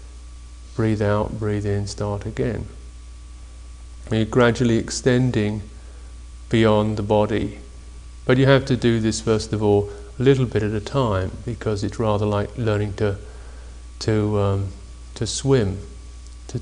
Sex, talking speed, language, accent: male, 140 wpm, English, British